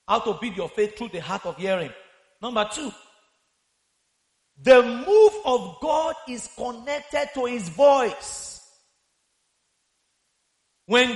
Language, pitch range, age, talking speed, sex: English, 245-320 Hz, 40-59, 120 wpm, male